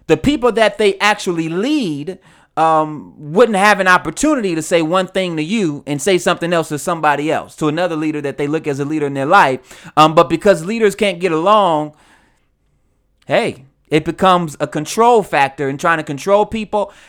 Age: 30-49